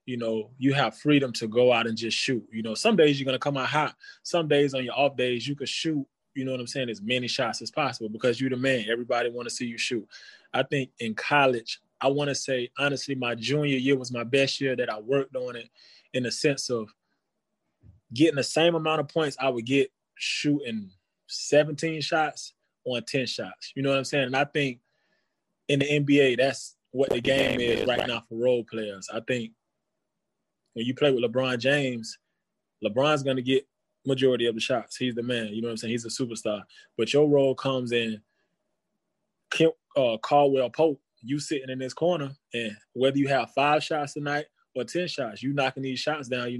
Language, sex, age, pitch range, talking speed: English, male, 20-39, 120-140 Hz, 215 wpm